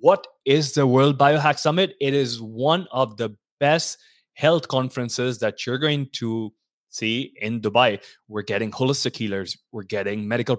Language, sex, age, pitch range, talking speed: English, male, 20-39, 110-145 Hz, 160 wpm